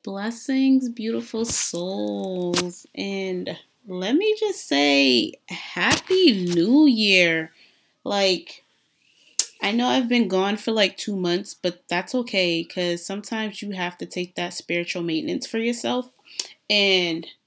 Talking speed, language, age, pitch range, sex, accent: 125 wpm, English, 20-39, 170-215 Hz, female, American